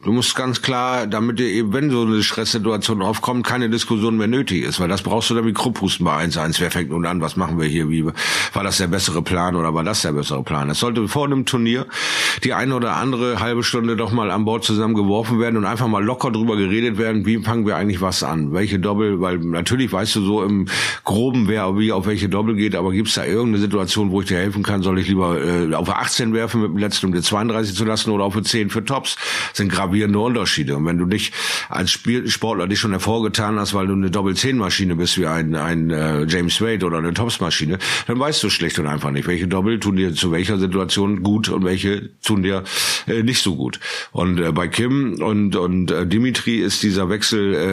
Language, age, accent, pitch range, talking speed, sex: German, 50-69, German, 90-115 Hz, 230 wpm, male